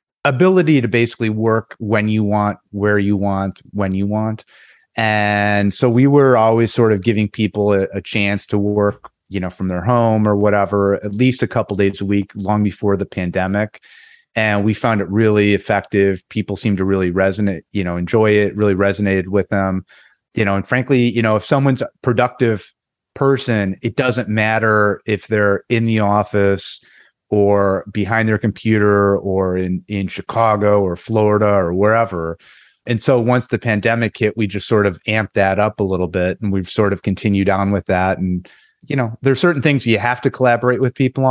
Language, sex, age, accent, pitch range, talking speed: English, male, 30-49, American, 100-115 Hz, 190 wpm